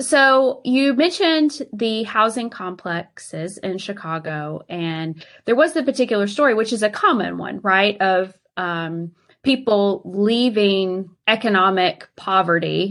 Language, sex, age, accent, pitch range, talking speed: English, female, 20-39, American, 175-215 Hz, 120 wpm